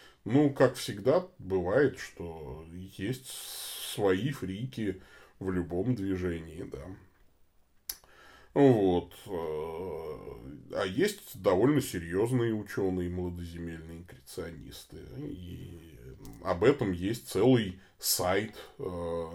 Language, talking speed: Russian, 80 wpm